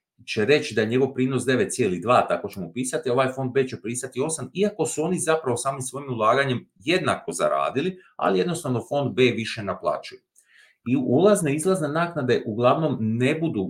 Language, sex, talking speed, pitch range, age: Croatian, male, 170 wpm, 100-140 Hz, 40-59